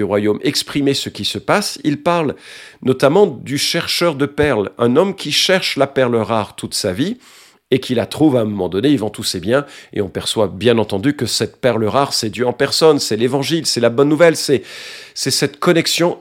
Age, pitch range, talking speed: 50-69, 110-155 Hz, 220 wpm